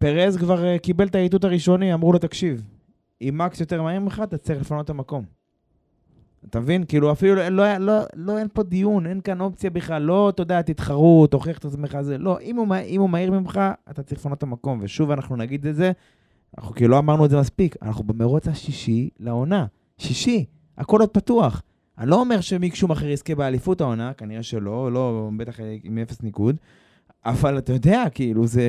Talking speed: 170 wpm